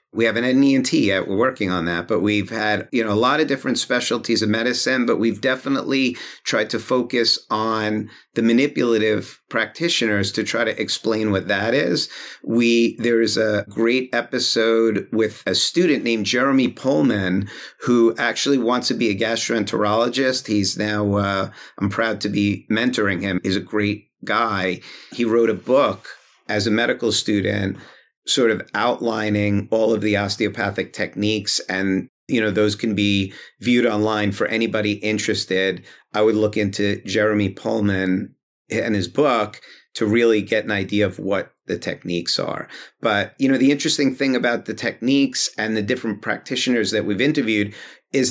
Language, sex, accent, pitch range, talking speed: English, male, American, 105-120 Hz, 165 wpm